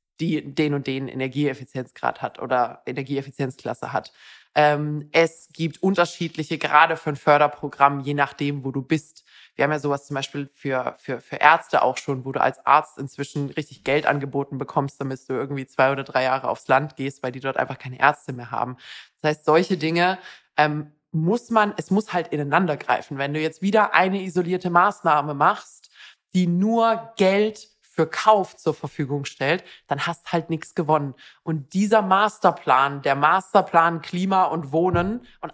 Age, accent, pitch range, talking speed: 20-39, German, 145-190 Hz, 175 wpm